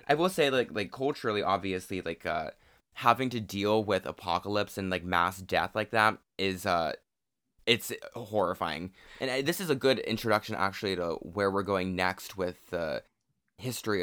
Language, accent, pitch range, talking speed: English, American, 95-110 Hz, 165 wpm